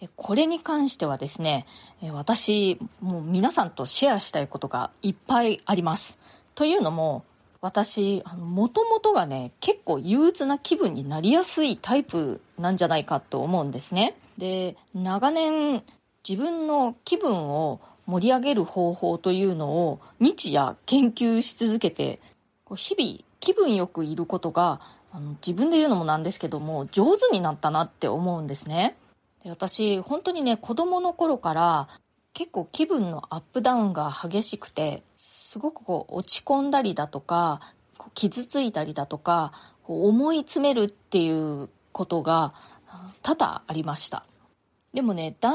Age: 20-39